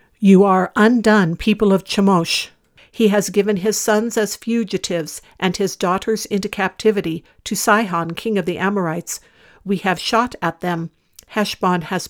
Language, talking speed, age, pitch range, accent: English, 155 wpm, 60-79, 175-215 Hz, American